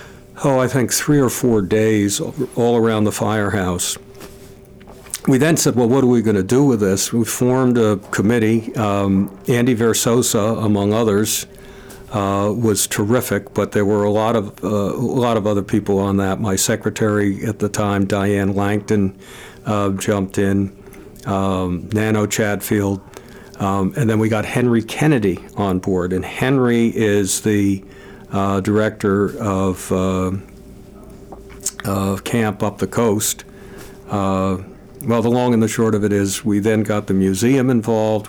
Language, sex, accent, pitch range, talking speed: English, male, American, 100-115 Hz, 155 wpm